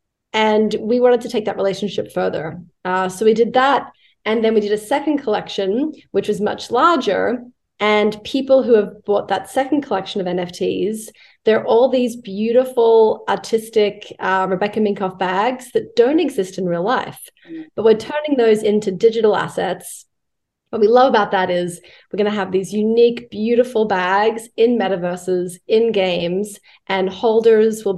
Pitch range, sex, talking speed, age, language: 185-225 Hz, female, 165 wpm, 30-49, English